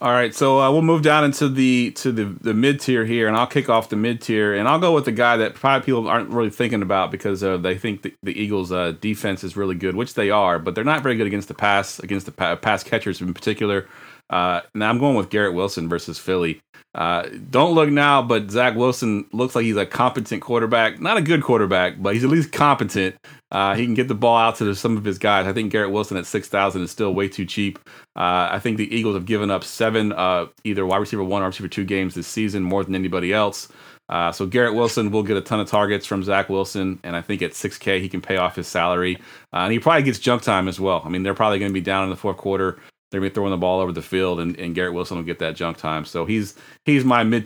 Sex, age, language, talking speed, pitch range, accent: male, 30-49, English, 270 wpm, 95-120 Hz, American